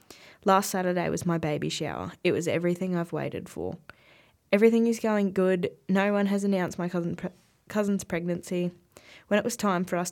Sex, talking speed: female, 185 wpm